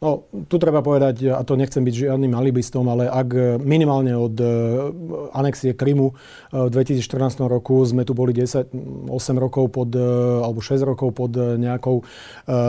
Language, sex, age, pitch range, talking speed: Slovak, male, 40-59, 125-140 Hz, 135 wpm